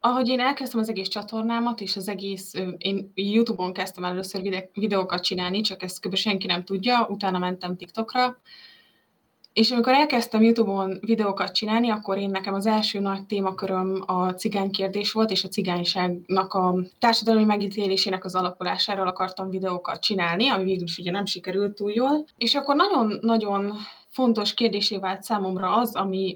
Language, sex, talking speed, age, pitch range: Hungarian, female, 155 wpm, 20-39, 190-225 Hz